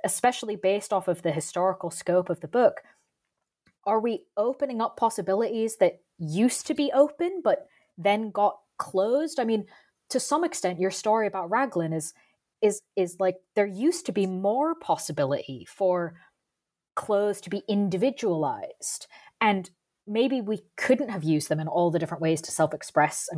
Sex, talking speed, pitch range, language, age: female, 160 wpm, 175-225 Hz, English, 20-39